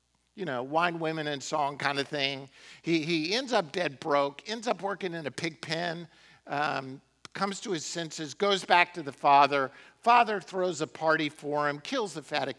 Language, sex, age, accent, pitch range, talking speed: English, male, 50-69, American, 135-190 Hz, 195 wpm